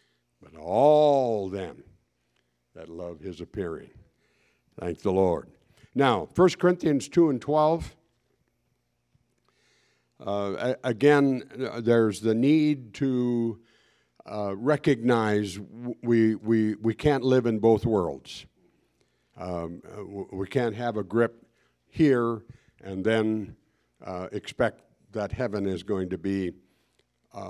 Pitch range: 100-130 Hz